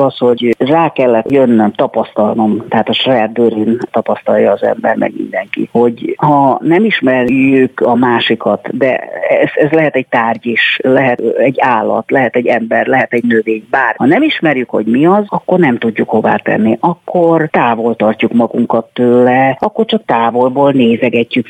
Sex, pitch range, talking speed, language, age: female, 125-190 Hz, 160 wpm, Hungarian, 40-59